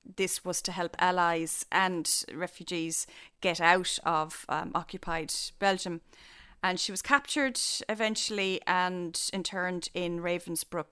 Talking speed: 120 wpm